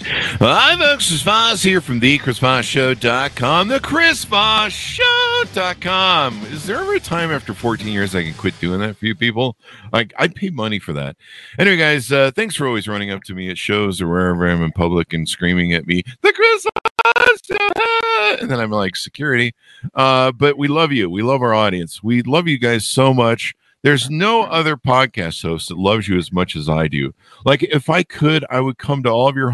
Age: 50-69